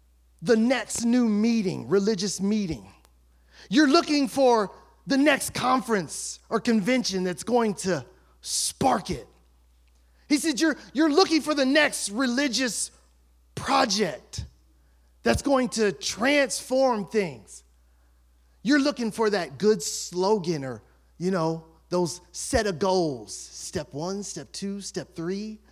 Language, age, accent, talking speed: English, 30-49, American, 125 wpm